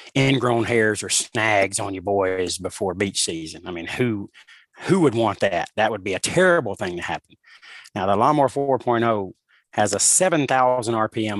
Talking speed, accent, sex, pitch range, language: 175 wpm, American, male, 105-125 Hz, English